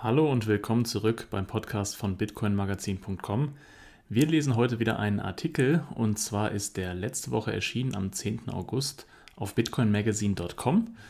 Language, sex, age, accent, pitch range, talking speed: German, male, 30-49, German, 100-125 Hz, 140 wpm